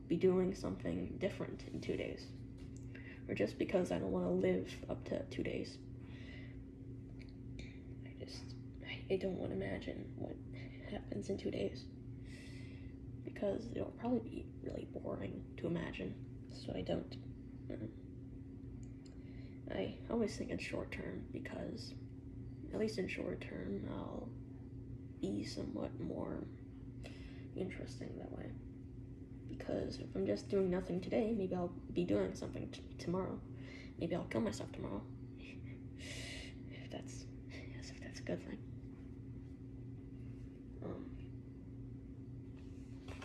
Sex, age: female, 10-29